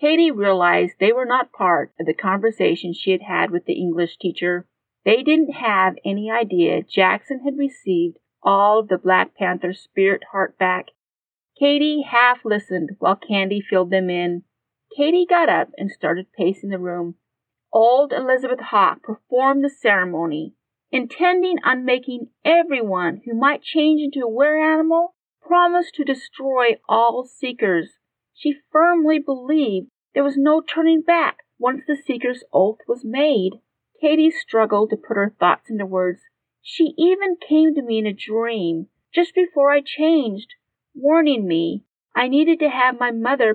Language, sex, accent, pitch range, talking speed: English, female, American, 195-295 Hz, 155 wpm